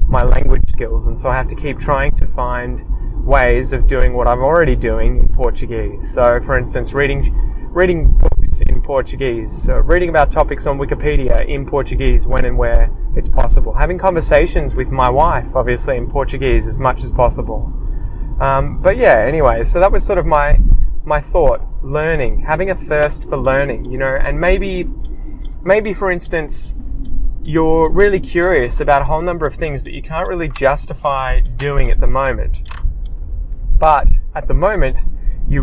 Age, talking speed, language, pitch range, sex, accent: 20-39, 170 wpm, English, 115-150 Hz, male, Australian